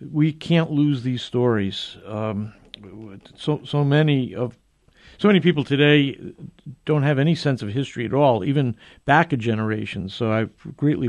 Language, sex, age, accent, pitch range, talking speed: English, male, 60-79, American, 125-170 Hz, 170 wpm